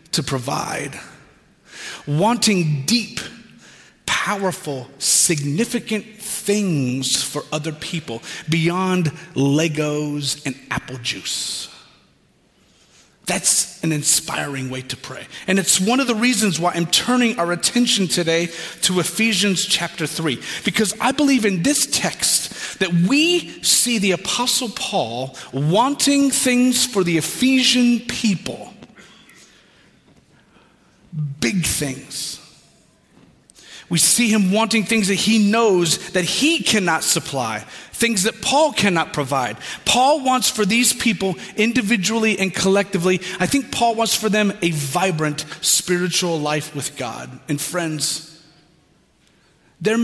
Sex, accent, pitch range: male, American, 155-220 Hz